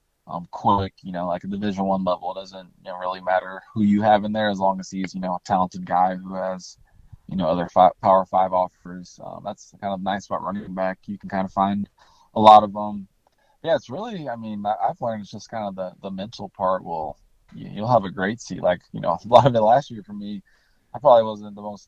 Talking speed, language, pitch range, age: 250 wpm, English, 95-105 Hz, 20-39